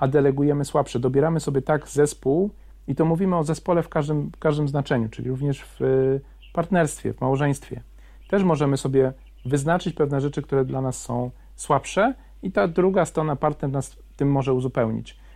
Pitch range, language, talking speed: 130-160 Hz, Polish, 165 wpm